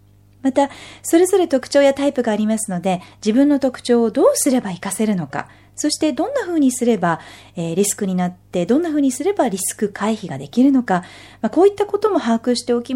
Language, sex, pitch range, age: Japanese, female, 175-280 Hz, 40-59